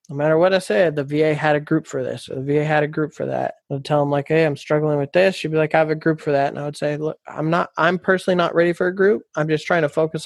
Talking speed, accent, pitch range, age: 340 wpm, American, 145-160 Hz, 20-39